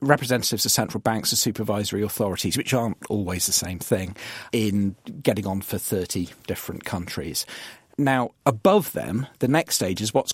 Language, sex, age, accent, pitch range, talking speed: English, male, 40-59, British, 100-125 Hz, 160 wpm